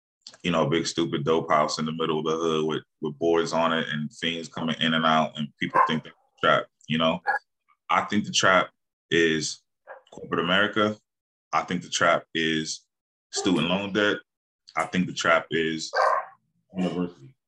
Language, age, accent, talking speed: English, 20-39, American, 180 wpm